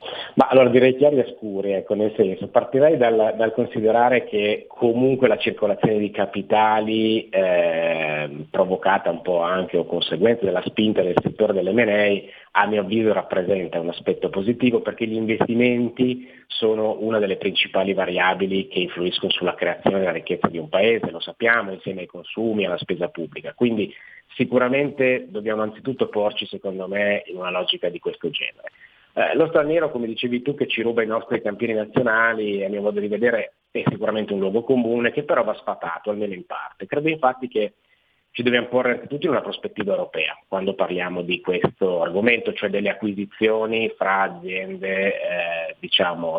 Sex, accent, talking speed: male, native, 165 wpm